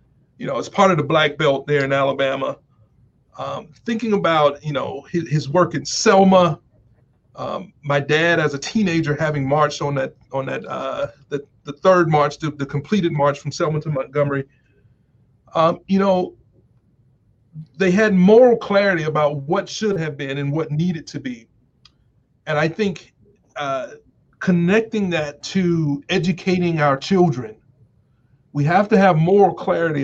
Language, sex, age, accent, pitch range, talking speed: English, male, 40-59, American, 130-175 Hz, 160 wpm